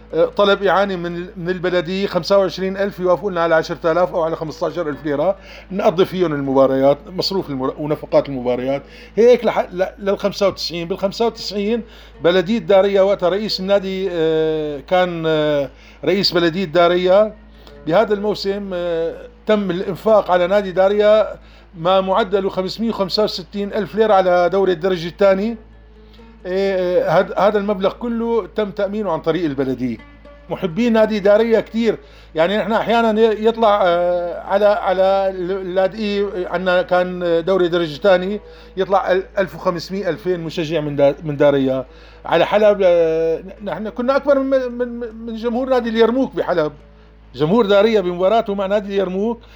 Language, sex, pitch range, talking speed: Arabic, male, 170-210 Hz, 120 wpm